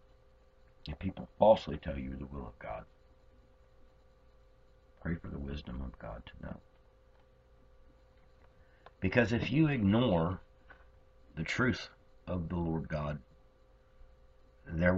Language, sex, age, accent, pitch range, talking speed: English, male, 60-79, American, 75-90 Hz, 110 wpm